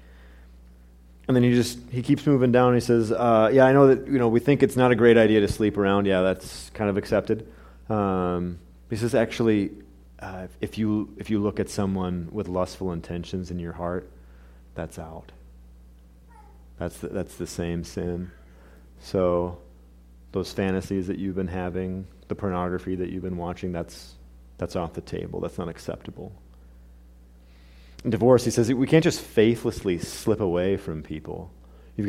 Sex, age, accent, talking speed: male, 30-49, American, 170 wpm